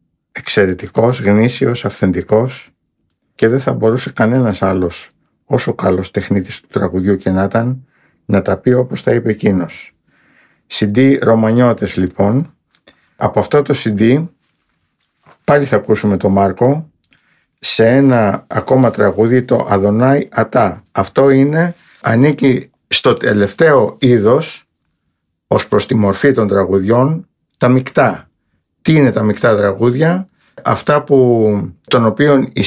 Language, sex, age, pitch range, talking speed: Greek, male, 50-69, 105-135 Hz, 125 wpm